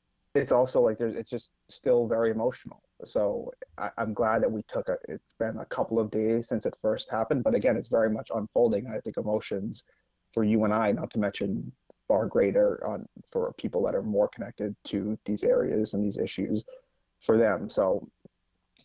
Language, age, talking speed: English, 30-49, 195 wpm